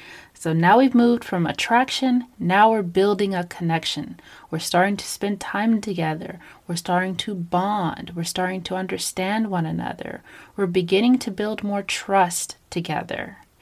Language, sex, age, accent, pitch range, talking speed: English, female, 30-49, American, 180-240 Hz, 150 wpm